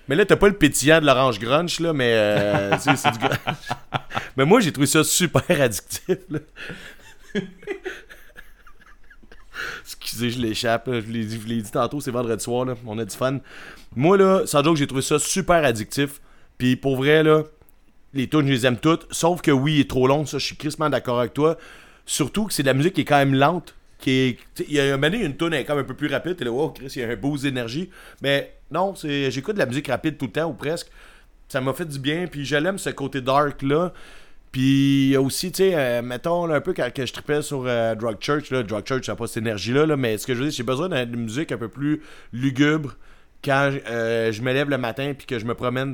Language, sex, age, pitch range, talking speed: French, male, 30-49, 125-150 Hz, 245 wpm